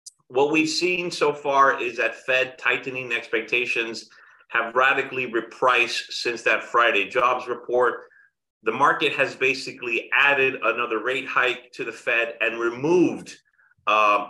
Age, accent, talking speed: 30-49, American, 135 wpm